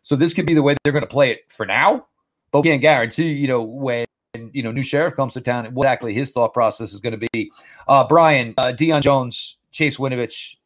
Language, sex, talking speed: English, male, 250 wpm